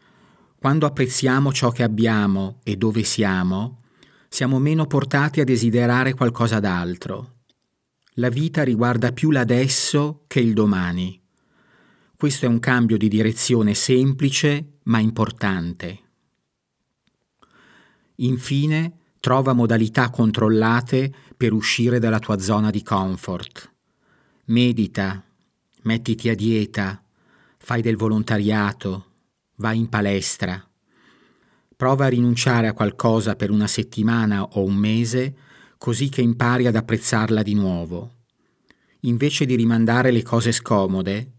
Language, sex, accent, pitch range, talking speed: Italian, male, native, 105-125 Hz, 110 wpm